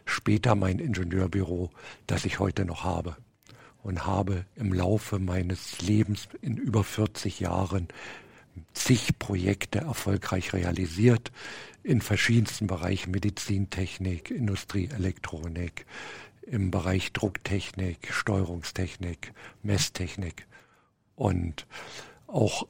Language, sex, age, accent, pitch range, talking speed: German, male, 50-69, German, 95-110 Hz, 90 wpm